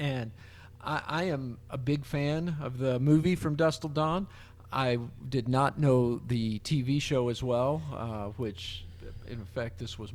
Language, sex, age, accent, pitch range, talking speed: English, male, 50-69, American, 110-140 Hz, 165 wpm